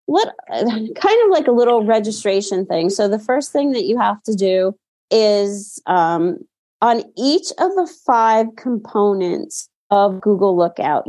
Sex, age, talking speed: female, 30-49, 150 wpm